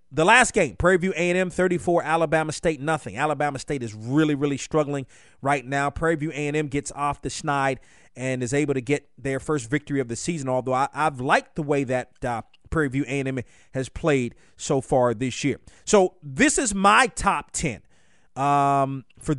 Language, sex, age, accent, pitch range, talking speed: English, male, 30-49, American, 135-175 Hz, 185 wpm